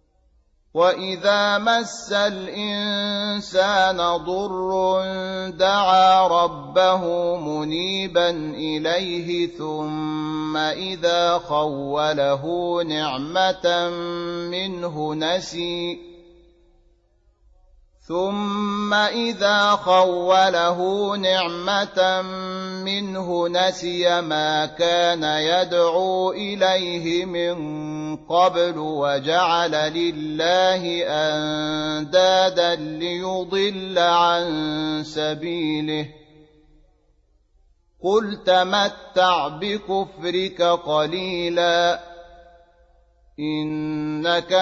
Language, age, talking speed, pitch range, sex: Arabic, 30-49, 45 wpm, 155-185 Hz, male